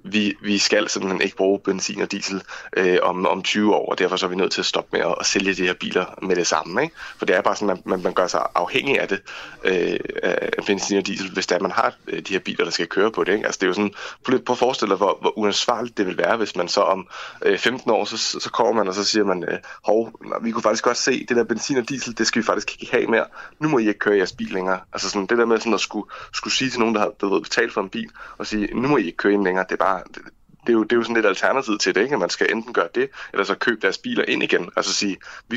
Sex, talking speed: male, 310 wpm